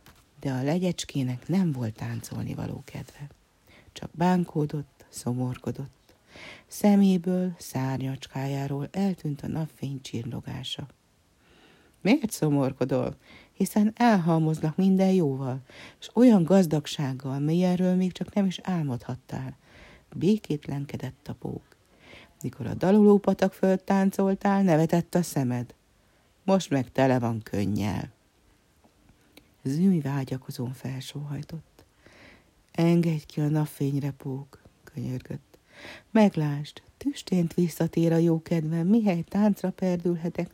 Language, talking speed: Hungarian, 100 wpm